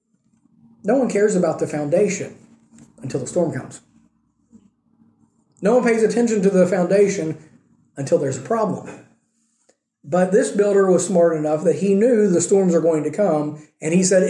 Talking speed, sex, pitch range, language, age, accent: 165 wpm, male, 160-205 Hz, English, 40-59, American